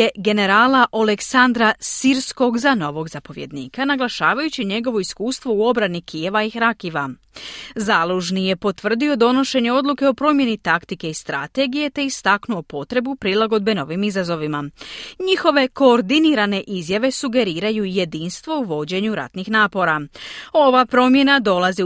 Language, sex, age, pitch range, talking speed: Croatian, female, 30-49, 185-255 Hz, 115 wpm